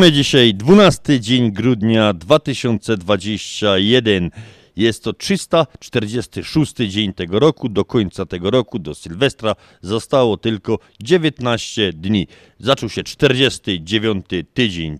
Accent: native